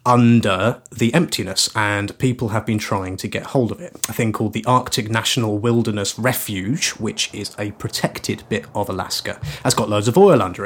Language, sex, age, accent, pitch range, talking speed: English, male, 30-49, British, 100-125 Hz, 190 wpm